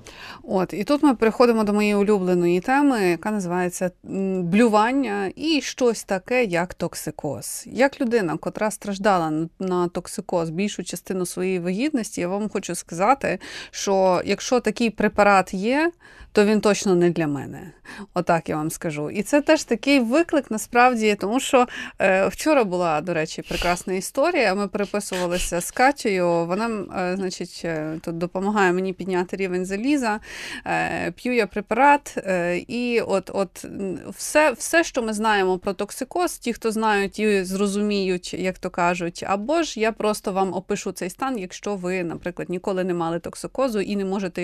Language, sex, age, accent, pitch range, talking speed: Ukrainian, female, 30-49, native, 185-250 Hz, 150 wpm